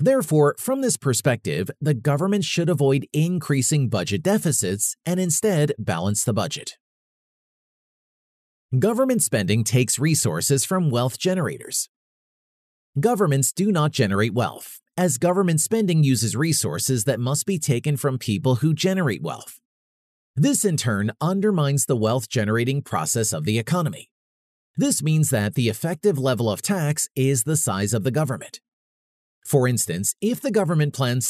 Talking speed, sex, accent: 140 wpm, male, American